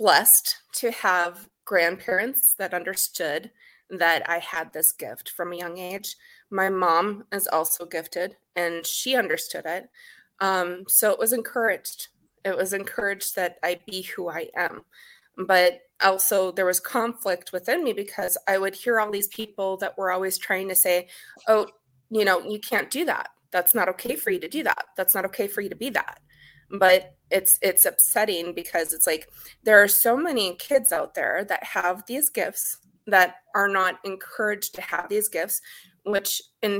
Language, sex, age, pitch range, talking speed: English, female, 20-39, 180-220 Hz, 180 wpm